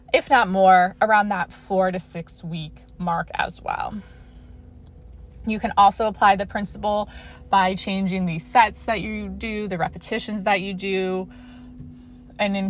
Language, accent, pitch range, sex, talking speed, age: English, American, 185-230 Hz, female, 150 wpm, 20-39